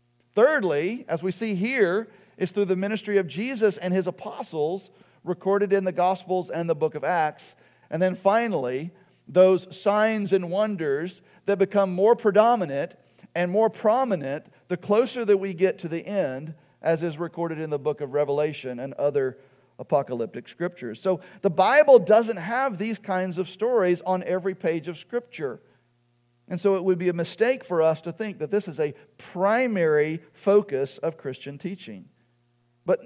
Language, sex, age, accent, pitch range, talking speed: English, male, 50-69, American, 140-195 Hz, 165 wpm